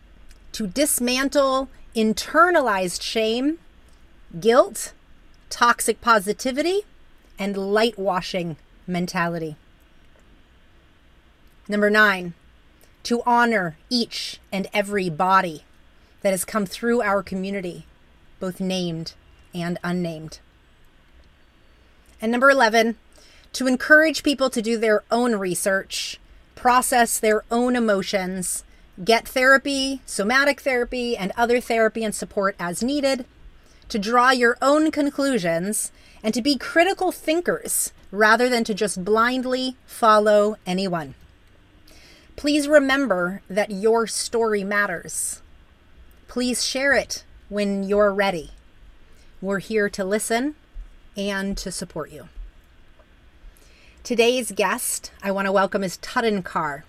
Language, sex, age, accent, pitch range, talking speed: English, female, 30-49, American, 180-245 Hz, 105 wpm